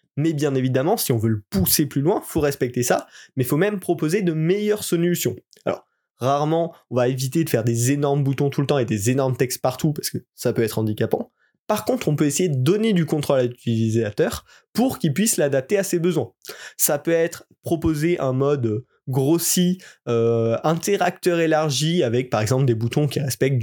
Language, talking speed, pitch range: French, 205 wpm, 125-165 Hz